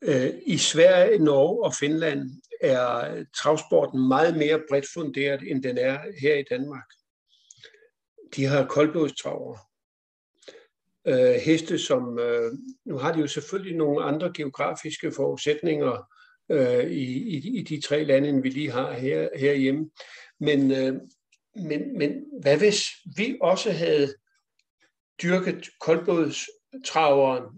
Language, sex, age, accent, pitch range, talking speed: Danish, male, 60-79, native, 140-230 Hz, 120 wpm